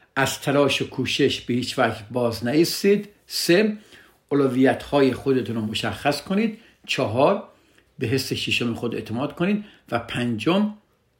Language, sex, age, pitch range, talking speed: Persian, male, 60-79, 125-190 Hz, 130 wpm